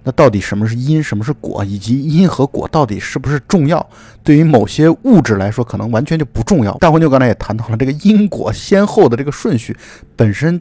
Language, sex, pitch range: Chinese, male, 110-150 Hz